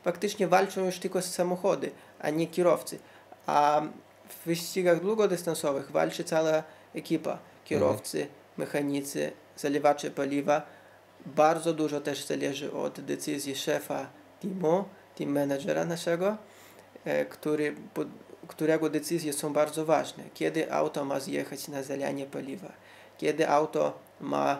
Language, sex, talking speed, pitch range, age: Polish, male, 115 wpm, 145-170 Hz, 20-39